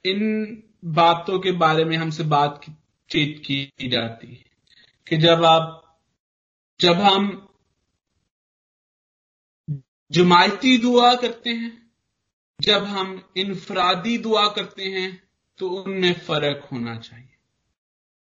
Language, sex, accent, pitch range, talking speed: Hindi, male, native, 175-230 Hz, 100 wpm